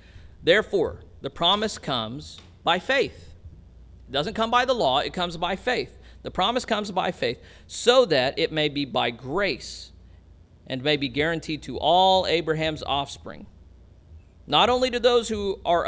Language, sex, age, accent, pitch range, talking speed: English, male, 40-59, American, 120-175 Hz, 160 wpm